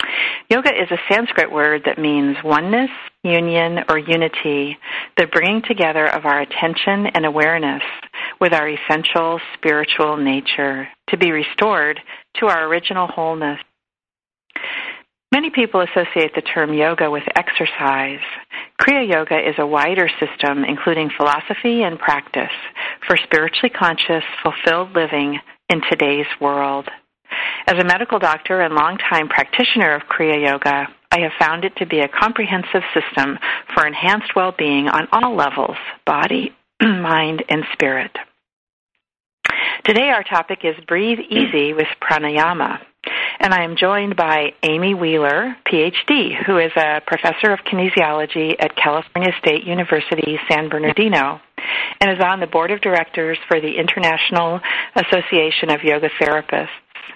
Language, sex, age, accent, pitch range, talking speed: English, female, 40-59, American, 150-185 Hz, 135 wpm